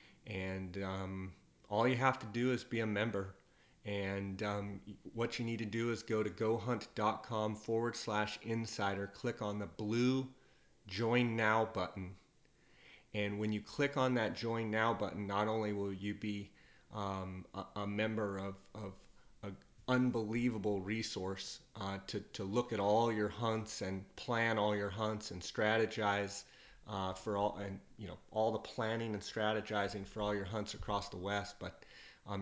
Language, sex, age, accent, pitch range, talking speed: English, male, 30-49, American, 100-115 Hz, 165 wpm